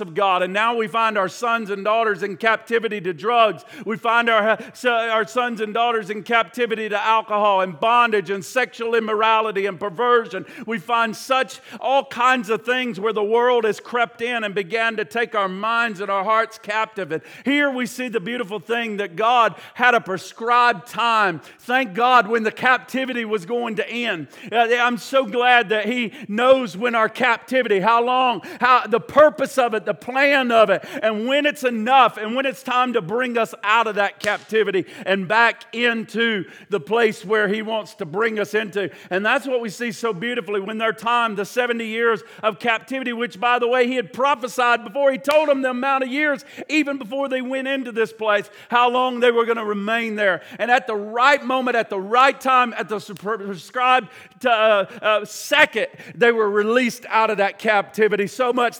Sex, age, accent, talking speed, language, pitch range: male, 50-69, American, 200 wpm, English, 210-245 Hz